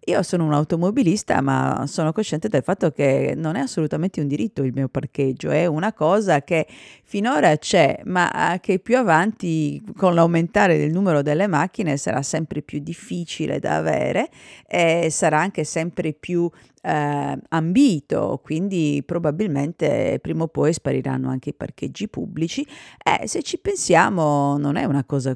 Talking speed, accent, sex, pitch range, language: 150 wpm, native, female, 140-180 Hz, Italian